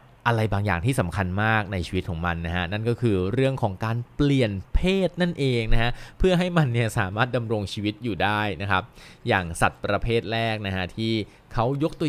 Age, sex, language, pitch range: 20-39, male, Thai, 95-130 Hz